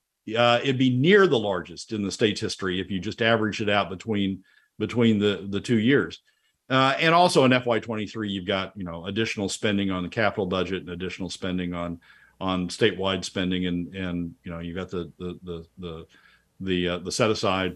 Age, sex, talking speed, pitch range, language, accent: 50-69, male, 205 wpm, 95-135 Hz, English, American